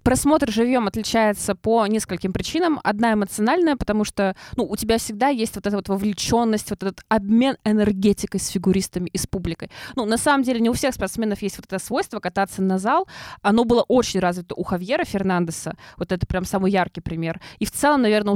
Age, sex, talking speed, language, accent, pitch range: 20-39, female, 195 wpm, Russian, native, 195-240 Hz